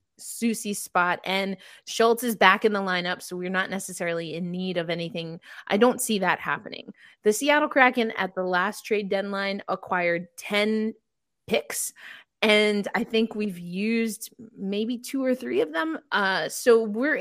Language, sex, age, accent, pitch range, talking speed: English, female, 20-39, American, 185-230 Hz, 165 wpm